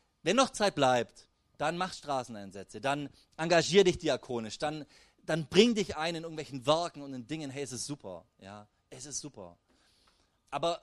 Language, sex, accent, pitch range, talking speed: German, male, German, 125-180 Hz, 170 wpm